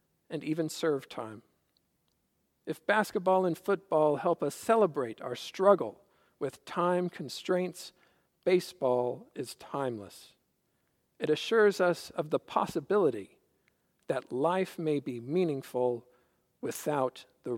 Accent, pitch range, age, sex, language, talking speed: American, 145-180 Hz, 50-69, male, English, 110 wpm